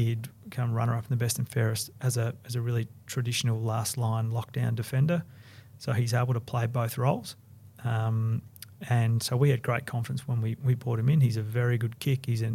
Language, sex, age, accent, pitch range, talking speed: English, male, 30-49, Australian, 115-125 Hz, 215 wpm